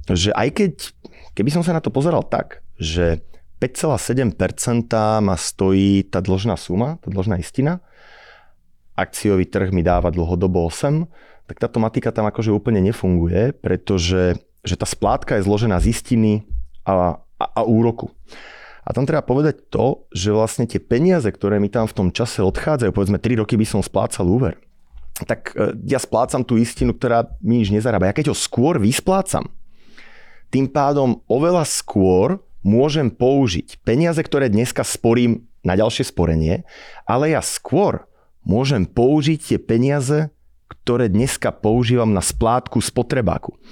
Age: 30-49